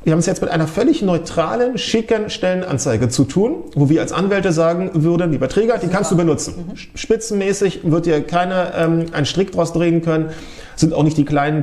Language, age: German, 40-59